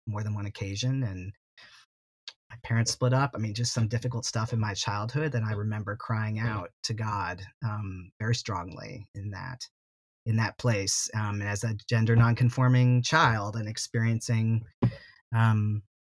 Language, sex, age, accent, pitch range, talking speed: English, male, 30-49, American, 105-120 Hz, 160 wpm